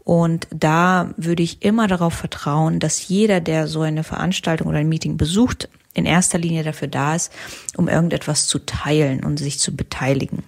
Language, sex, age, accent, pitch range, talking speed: English, female, 30-49, German, 155-180 Hz, 180 wpm